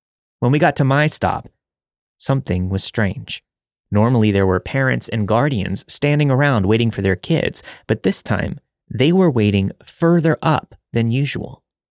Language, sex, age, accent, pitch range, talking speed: English, male, 30-49, American, 100-135 Hz, 155 wpm